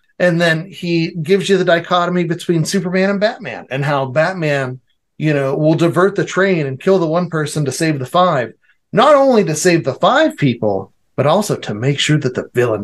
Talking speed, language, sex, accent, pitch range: 205 wpm, English, male, American, 135-175 Hz